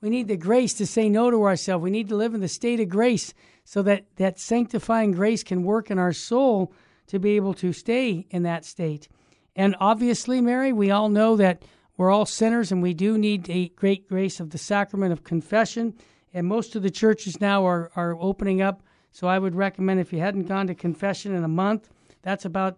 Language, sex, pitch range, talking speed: English, male, 190-235 Hz, 220 wpm